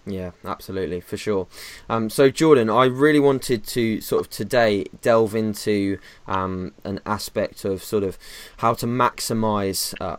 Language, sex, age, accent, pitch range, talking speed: English, male, 20-39, British, 100-115 Hz, 155 wpm